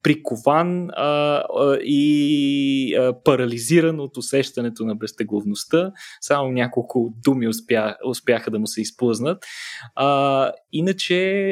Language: Bulgarian